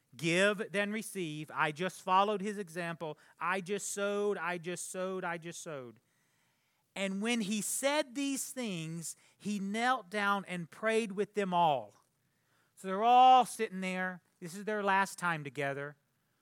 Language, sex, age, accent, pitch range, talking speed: English, male, 40-59, American, 150-200 Hz, 155 wpm